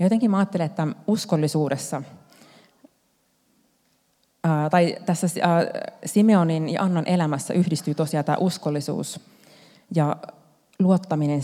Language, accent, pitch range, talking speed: Finnish, native, 150-180 Hz, 105 wpm